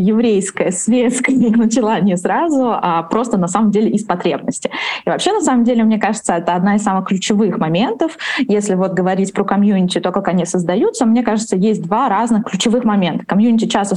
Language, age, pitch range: Russian, 20-39, 185-225 Hz